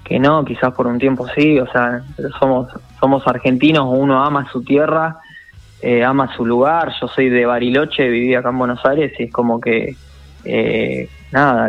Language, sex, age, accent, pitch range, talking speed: Spanish, male, 20-39, Argentinian, 120-135 Hz, 180 wpm